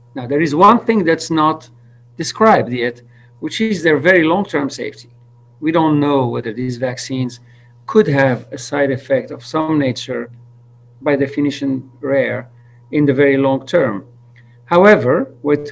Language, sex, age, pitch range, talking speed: English, male, 50-69, 120-155 Hz, 150 wpm